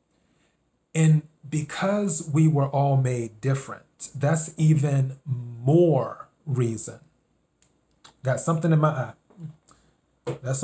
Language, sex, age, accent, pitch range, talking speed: English, male, 30-49, American, 135-170 Hz, 95 wpm